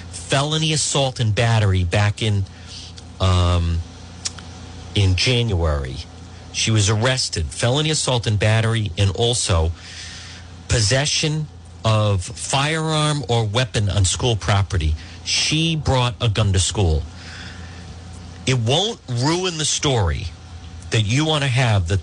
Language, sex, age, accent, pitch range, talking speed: English, male, 50-69, American, 90-135 Hz, 115 wpm